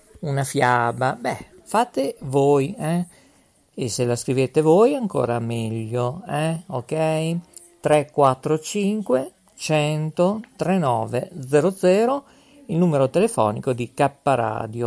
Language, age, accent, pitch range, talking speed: Italian, 50-69, native, 125-175 Hz, 100 wpm